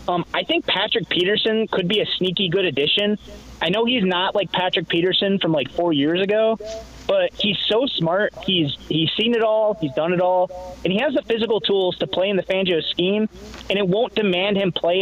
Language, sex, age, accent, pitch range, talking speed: English, male, 20-39, American, 165-215 Hz, 215 wpm